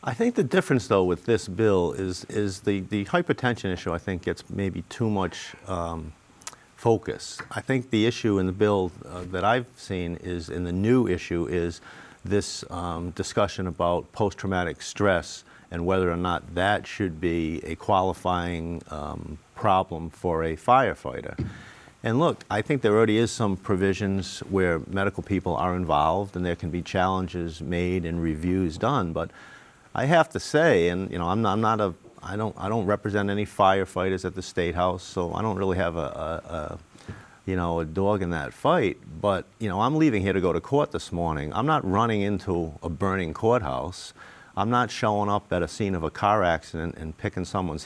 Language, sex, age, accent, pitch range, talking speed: English, male, 50-69, American, 85-105 Hz, 190 wpm